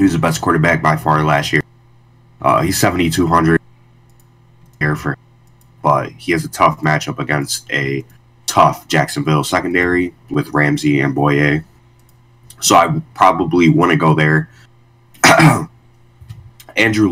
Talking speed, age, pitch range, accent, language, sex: 120 wpm, 20-39, 80-120 Hz, American, English, male